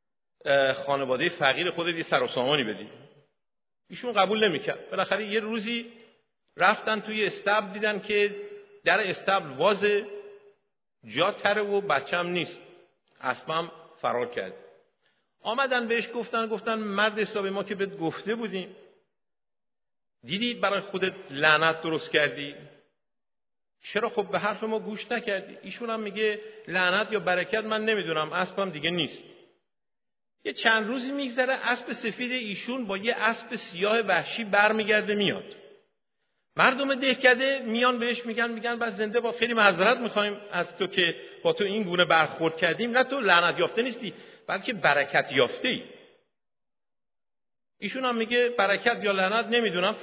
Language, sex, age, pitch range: Persian, male, 50-69, 190-245 Hz